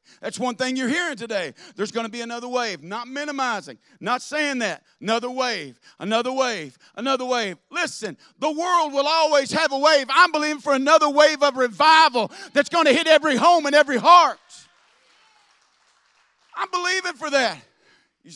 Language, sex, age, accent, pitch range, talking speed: English, male, 50-69, American, 230-285 Hz, 170 wpm